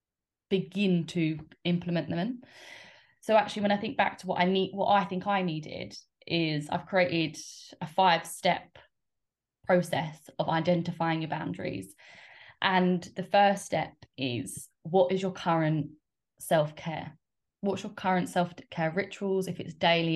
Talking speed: 150 wpm